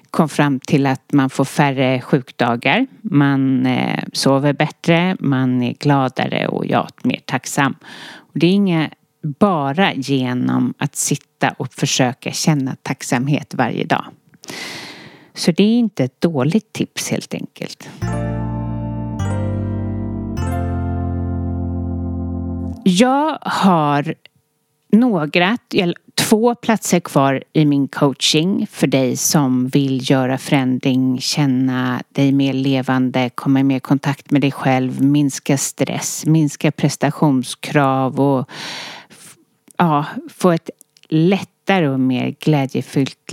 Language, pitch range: English, 130-160 Hz